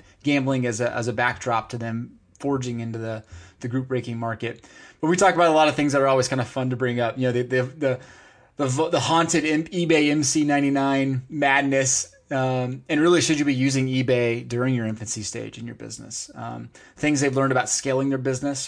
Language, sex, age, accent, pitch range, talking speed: English, male, 20-39, American, 120-150 Hz, 220 wpm